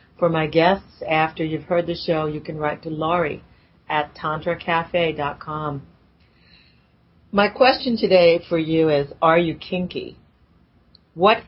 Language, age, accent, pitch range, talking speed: English, 40-59, American, 155-185 Hz, 130 wpm